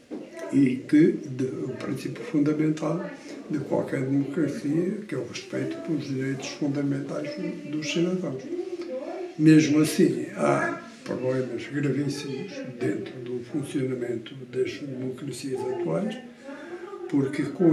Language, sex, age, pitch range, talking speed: Portuguese, male, 60-79, 135-185 Hz, 100 wpm